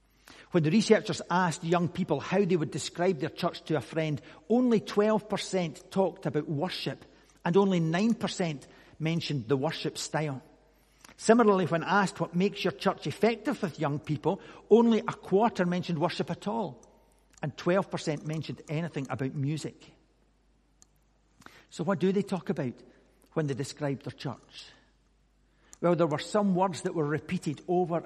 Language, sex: English, male